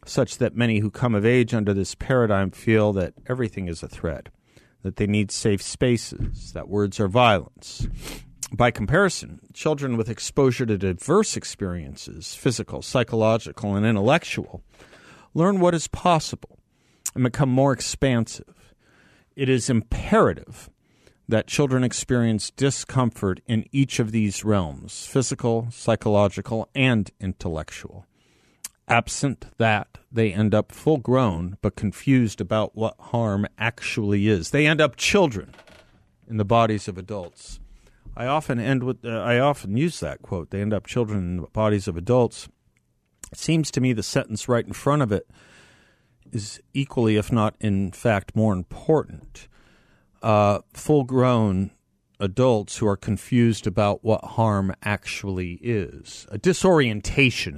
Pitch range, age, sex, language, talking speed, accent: 100-125 Hz, 50-69, male, English, 140 wpm, American